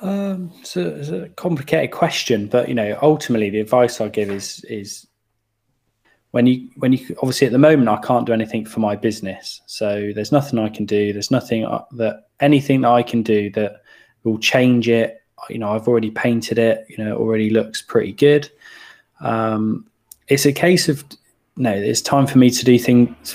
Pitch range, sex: 110-130 Hz, male